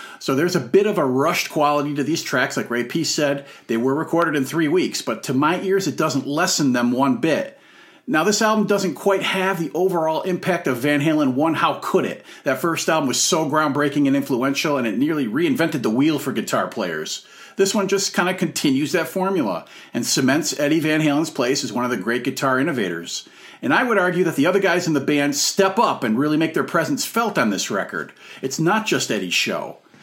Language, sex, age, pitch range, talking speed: English, male, 40-59, 140-185 Hz, 225 wpm